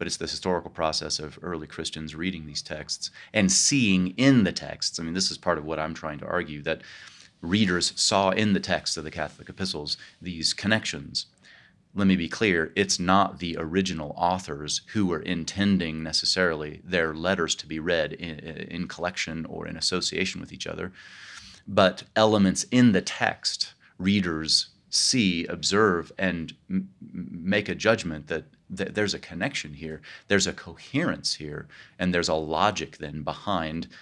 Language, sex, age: English, male, 30-49